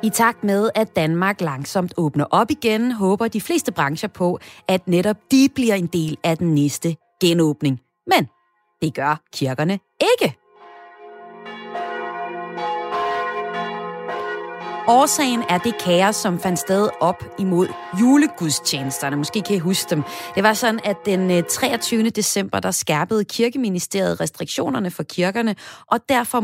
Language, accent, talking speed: Danish, native, 135 wpm